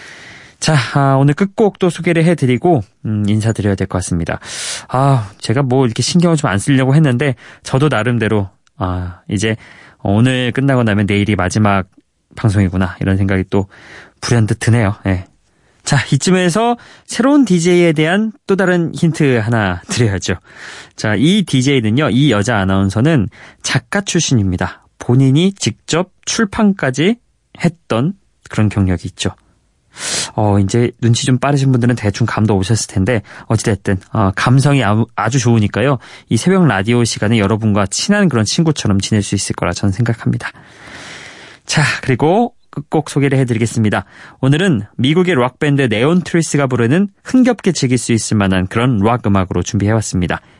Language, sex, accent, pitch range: Korean, male, native, 105-150 Hz